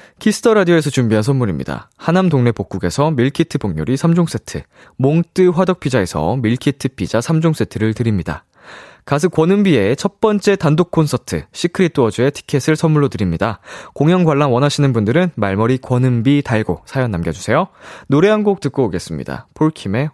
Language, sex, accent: Korean, male, native